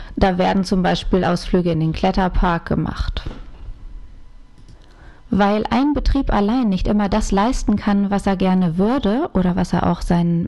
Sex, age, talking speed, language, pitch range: female, 30-49, 155 wpm, German, 185-225 Hz